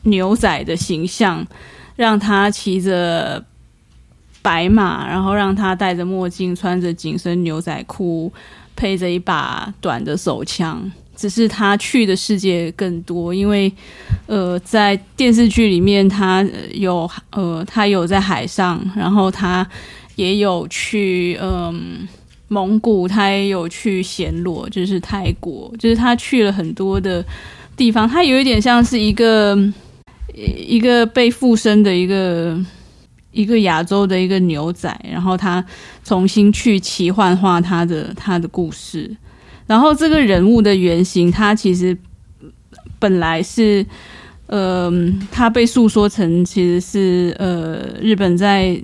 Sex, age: female, 20-39